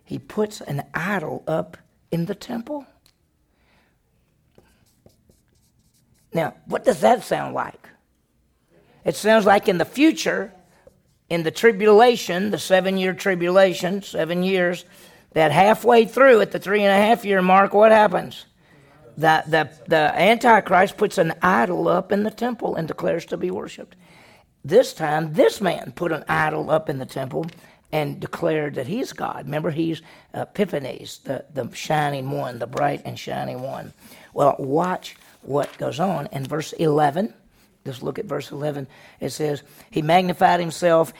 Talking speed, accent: 145 wpm, American